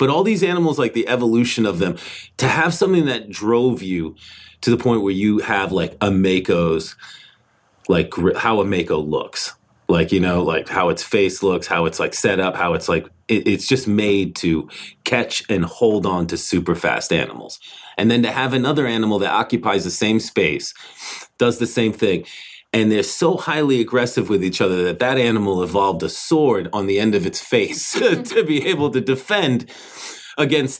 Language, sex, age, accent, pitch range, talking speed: English, male, 30-49, American, 110-135 Hz, 190 wpm